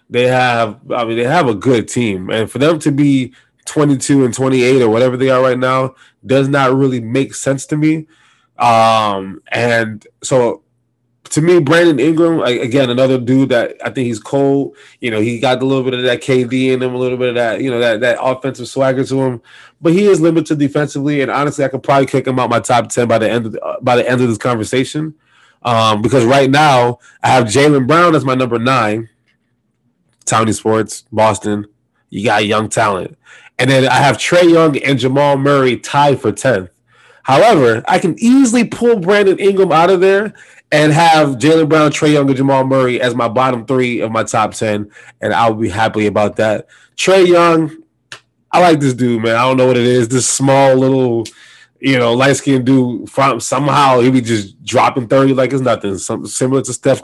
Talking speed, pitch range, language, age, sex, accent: 200 wpm, 120-140 Hz, English, 20-39, male, American